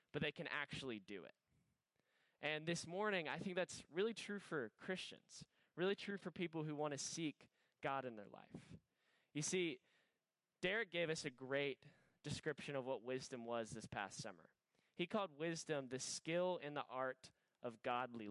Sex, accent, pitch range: male, American, 130-175 Hz